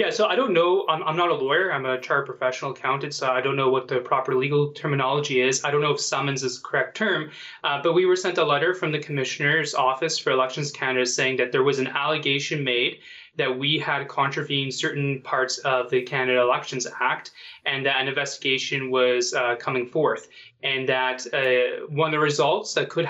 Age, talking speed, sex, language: 20-39, 215 wpm, male, English